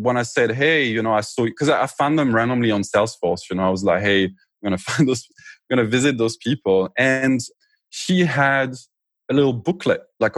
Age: 20-39